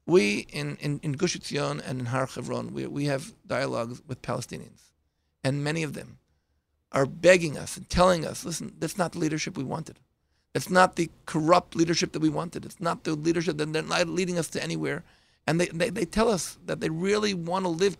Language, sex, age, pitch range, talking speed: English, male, 40-59, 140-180 Hz, 215 wpm